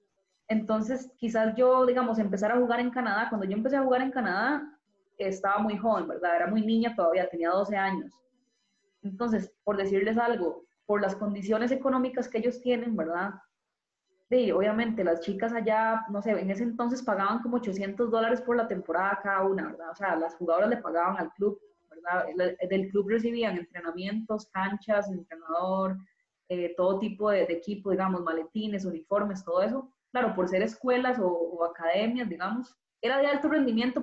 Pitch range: 190-235 Hz